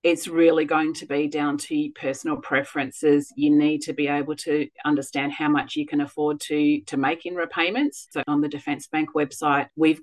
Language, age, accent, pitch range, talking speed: English, 40-59, Australian, 145-170 Hz, 195 wpm